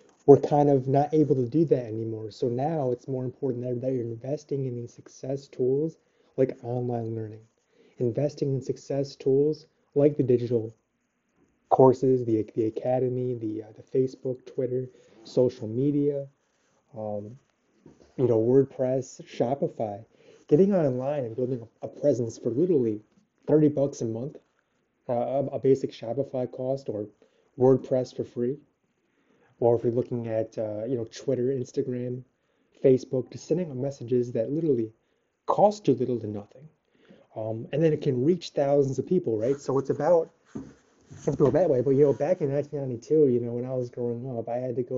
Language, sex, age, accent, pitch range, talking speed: English, male, 30-49, American, 115-140 Hz, 165 wpm